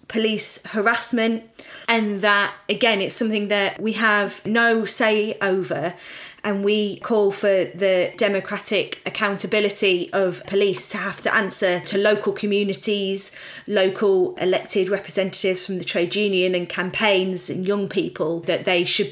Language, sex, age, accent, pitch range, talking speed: English, female, 20-39, British, 185-210 Hz, 140 wpm